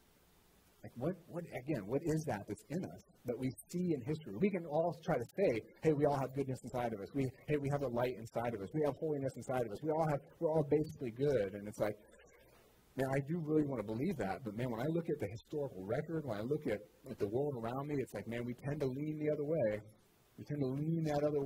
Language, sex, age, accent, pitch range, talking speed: English, male, 40-59, American, 110-155 Hz, 265 wpm